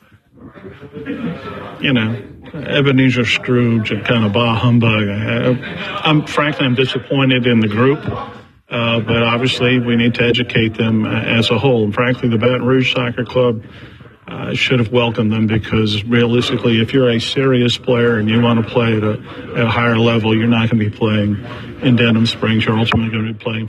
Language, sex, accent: English, male, American